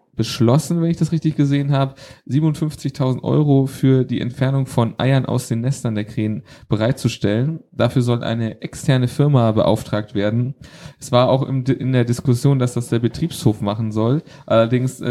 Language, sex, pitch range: German, male, 110-135 Hz